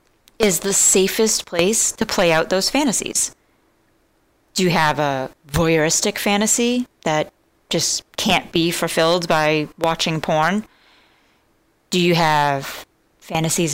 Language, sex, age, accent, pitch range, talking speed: English, female, 30-49, American, 165-205 Hz, 120 wpm